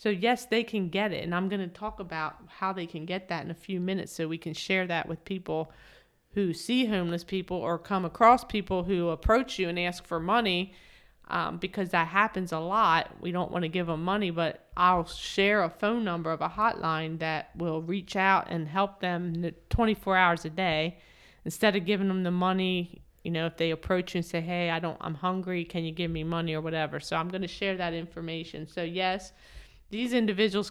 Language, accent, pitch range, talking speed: English, American, 165-195 Hz, 220 wpm